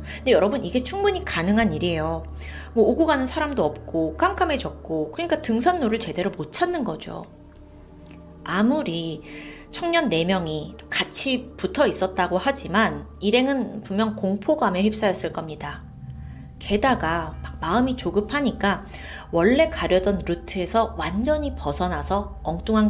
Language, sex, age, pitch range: Korean, female, 30-49, 160-260 Hz